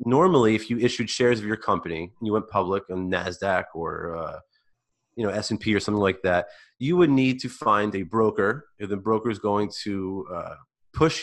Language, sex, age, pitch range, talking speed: English, male, 30-49, 95-125 Hz, 200 wpm